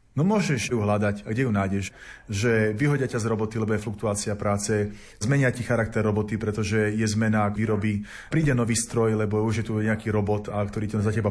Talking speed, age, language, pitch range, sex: 205 wpm, 30-49, Slovak, 105-130 Hz, male